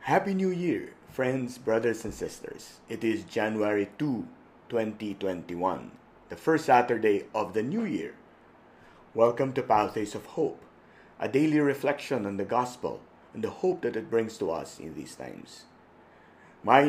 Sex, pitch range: male, 105-140 Hz